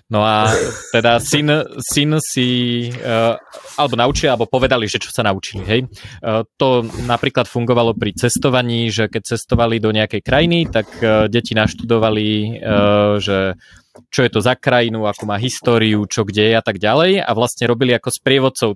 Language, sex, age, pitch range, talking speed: Slovak, male, 20-39, 105-125 Hz, 175 wpm